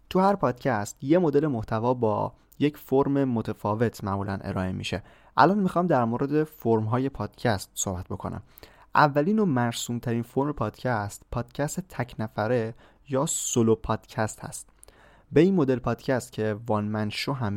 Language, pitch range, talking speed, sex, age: Persian, 110-135 Hz, 145 wpm, male, 20-39